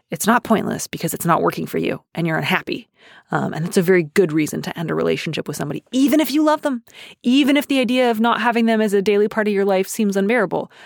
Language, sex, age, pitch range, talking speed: English, female, 30-49, 175-215 Hz, 260 wpm